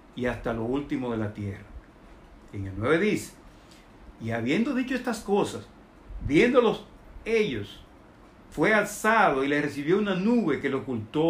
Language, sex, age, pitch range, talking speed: Spanish, male, 60-79, 135-220 Hz, 150 wpm